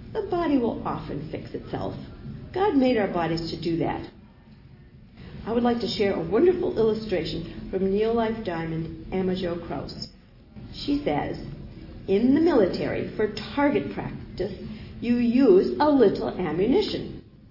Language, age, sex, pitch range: English, 50-69, female, 180-280 Hz